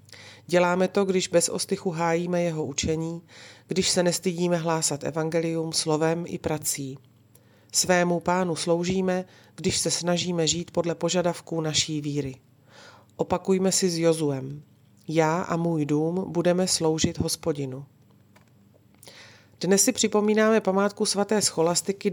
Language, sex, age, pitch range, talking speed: Slovak, female, 40-59, 145-175 Hz, 120 wpm